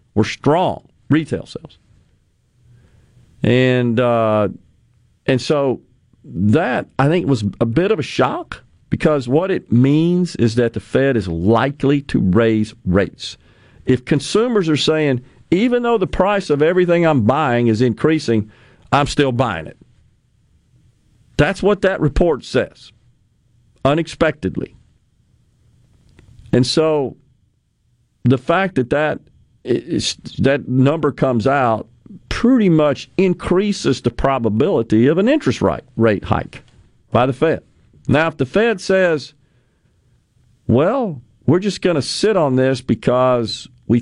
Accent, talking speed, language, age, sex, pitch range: American, 125 wpm, English, 50-69, male, 115-145 Hz